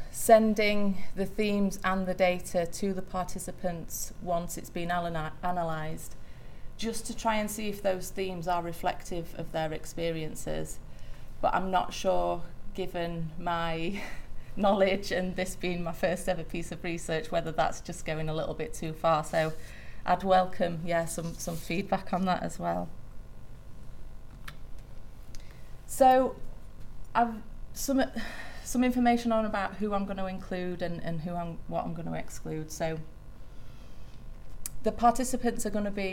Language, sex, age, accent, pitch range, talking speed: English, female, 30-49, British, 160-195 Hz, 150 wpm